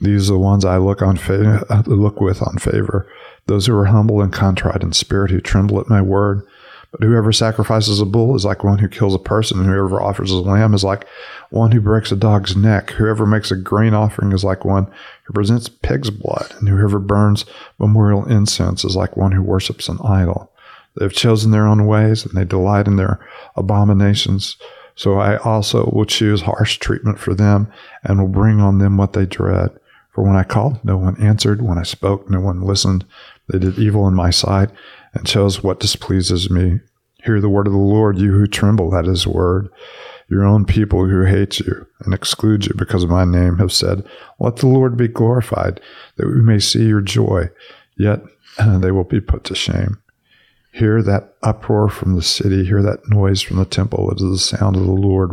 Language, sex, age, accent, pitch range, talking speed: English, male, 50-69, American, 95-105 Hz, 205 wpm